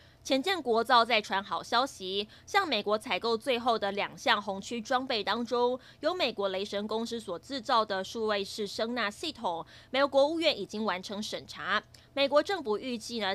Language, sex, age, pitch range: Chinese, female, 20-39, 205-260 Hz